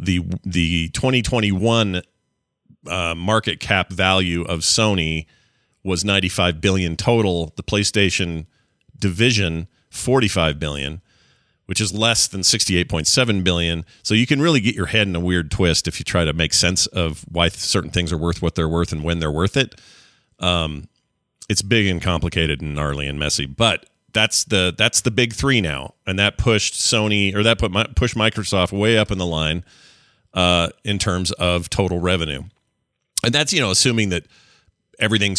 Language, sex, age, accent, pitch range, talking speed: English, male, 40-59, American, 85-110 Hz, 170 wpm